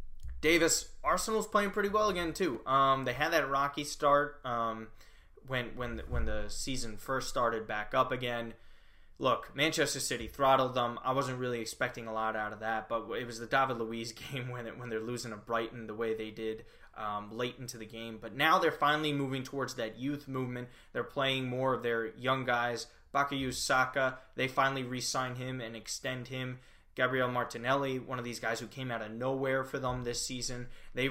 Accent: American